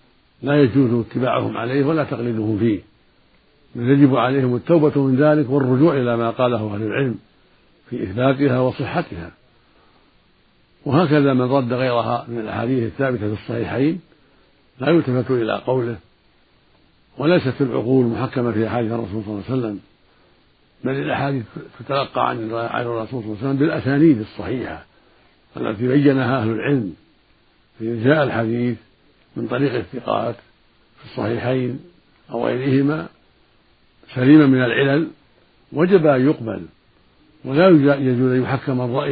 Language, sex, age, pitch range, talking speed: Arabic, male, 60-79, 115-140 Hz, 125 wpm